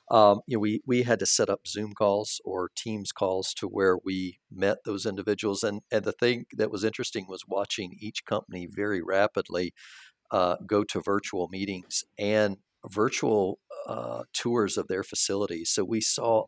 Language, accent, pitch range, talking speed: English, American, 95-110 Hz, 175 wpm